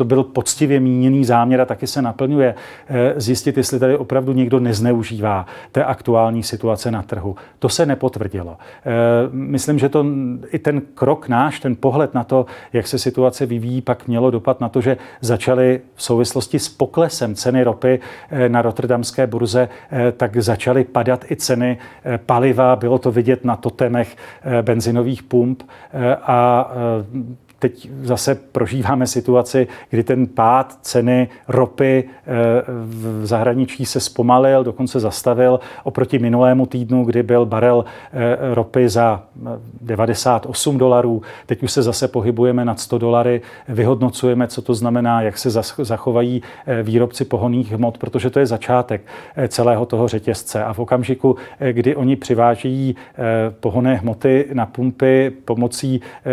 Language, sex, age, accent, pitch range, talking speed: Czech, male, 40-59, native, 120-130 Hz, 135 wpm